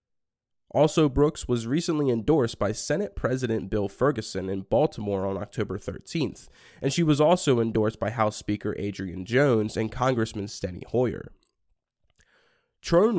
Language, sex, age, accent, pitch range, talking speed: English, male, 20-39, American, 105-140 Hz, 135 wpm